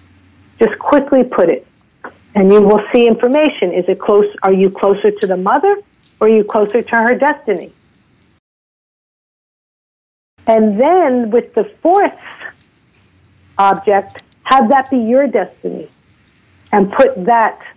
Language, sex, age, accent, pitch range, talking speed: English, female, 50-69, American, 200-260 Hz, 130 wpm